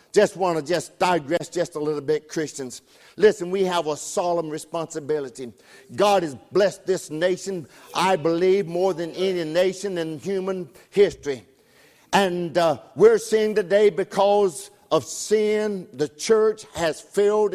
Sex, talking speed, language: male, 145 wpm, English